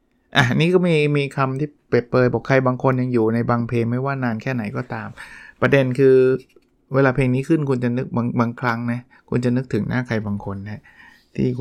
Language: Thai